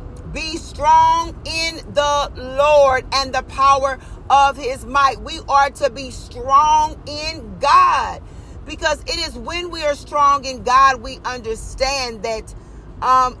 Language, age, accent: English, 40-59, American